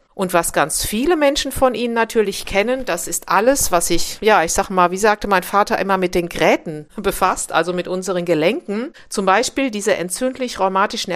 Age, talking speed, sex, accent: 50-69, 190 wpm, female, German